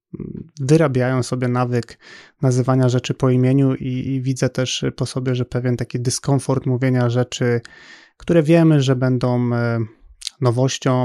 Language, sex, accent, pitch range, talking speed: Polish, male, native, 125-140 Hz, 130 wpm